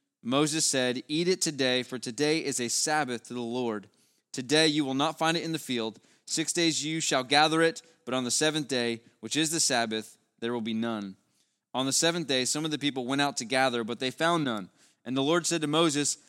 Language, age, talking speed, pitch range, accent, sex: English, 20-39, 230 wpm, 125-155 Hz, American, male